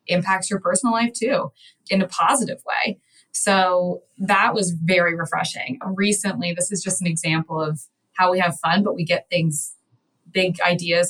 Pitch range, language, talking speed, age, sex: 165-200 Hz, English, 170 wpm, 20-39, female